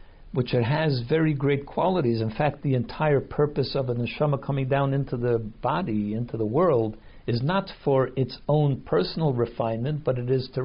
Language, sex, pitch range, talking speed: English, male, 125-155 Hz, 185 wpm